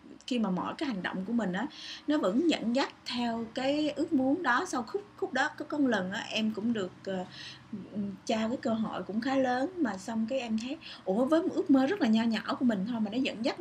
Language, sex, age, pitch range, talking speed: Vietnamese, female, 20-39, 195-260 Hz, 255 wpm